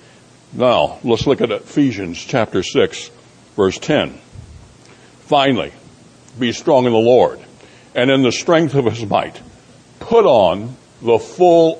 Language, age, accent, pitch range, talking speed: English, 60-79, American, 115-145 Hz, 130 wpm